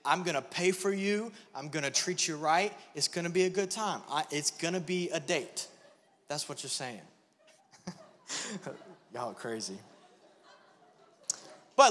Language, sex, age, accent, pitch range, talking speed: English, male, 20-39, American, 170-230 Hz, 150 wpm